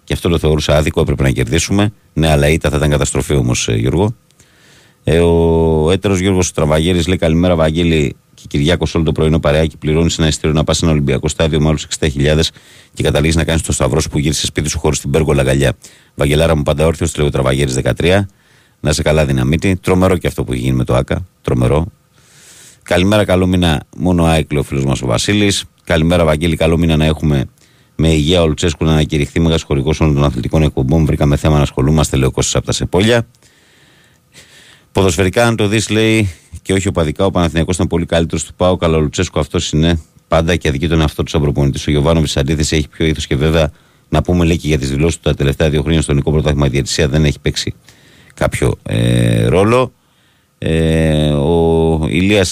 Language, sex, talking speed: Greek, male, 185 wpm